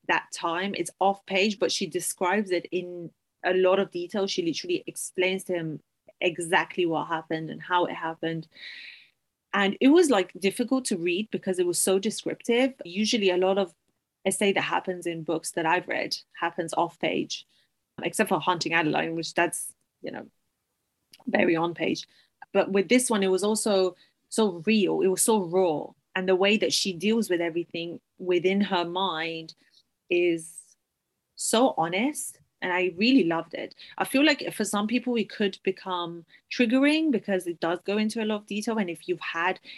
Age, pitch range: 30-49, 175-210 Hz